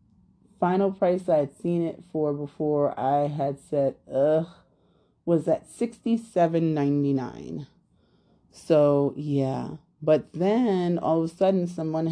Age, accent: 30-49, American